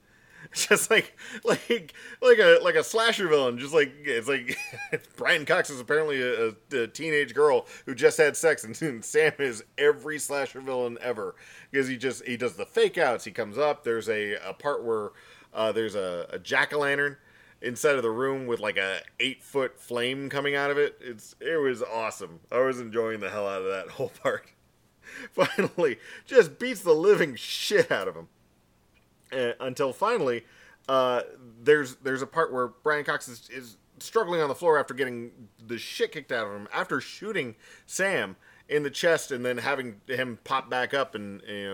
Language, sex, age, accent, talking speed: English, male, 40-59, American, 190 wpm